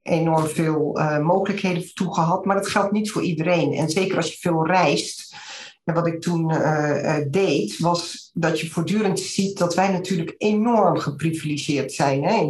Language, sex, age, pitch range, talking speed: Dutch, female, 50-69, 155-180 Hz, 180 wpm